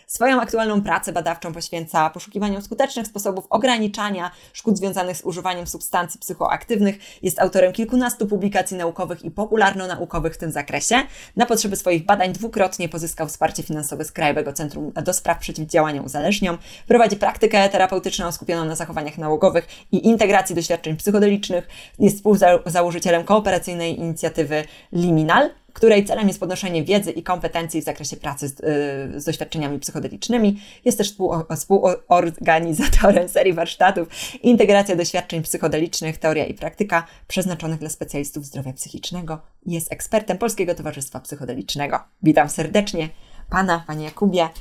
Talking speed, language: 130 wpm, Polish